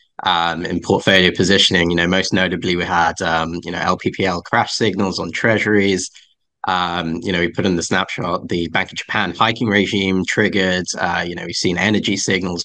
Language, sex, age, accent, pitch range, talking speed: English, male, 20-39, British, 90-105 Hz, 190 wpm